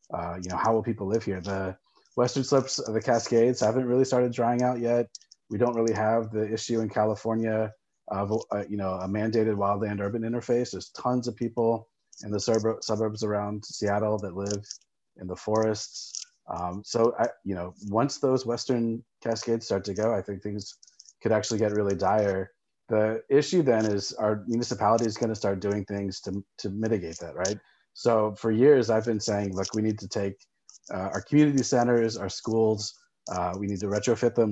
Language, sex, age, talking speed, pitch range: English, male, 30-49, 195 wpm, 100-115 Hz